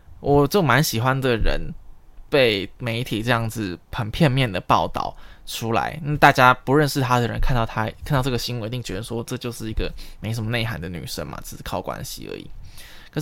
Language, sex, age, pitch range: Chinese, male, 20-39, 110-135 Hz